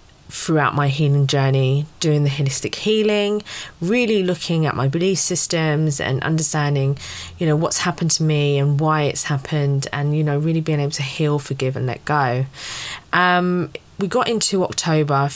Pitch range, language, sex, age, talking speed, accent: 140-170 Hz, English, female, 20-39, 170 wpm, British